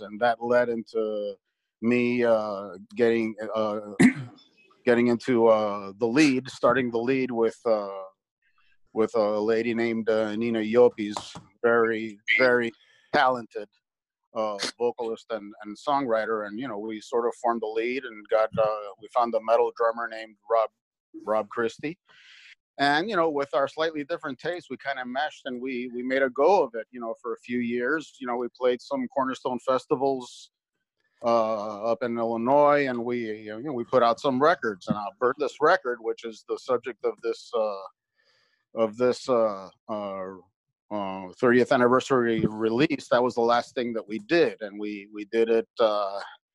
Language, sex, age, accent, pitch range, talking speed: English, male, 40-59, American, 110-130 Hz, 170 wpm